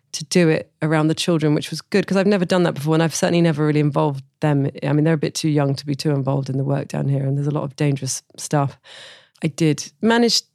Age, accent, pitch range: 40-59, British, 145-175 Hz